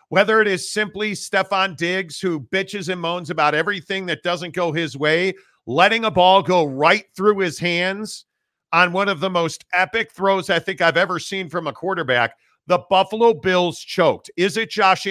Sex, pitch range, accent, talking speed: male, 165-195 Hz, American, 185 wpm